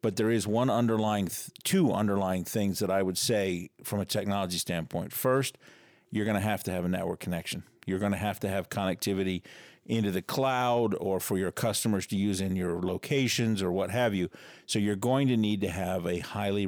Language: English